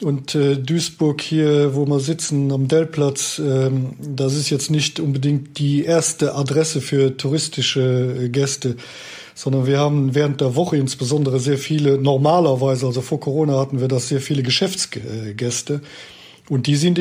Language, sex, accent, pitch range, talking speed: German, male, German, 130-150 Hz, 145 wpm